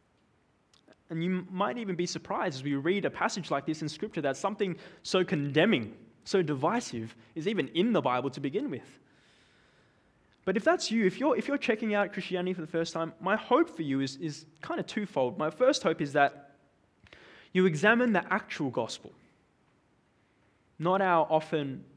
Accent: Australian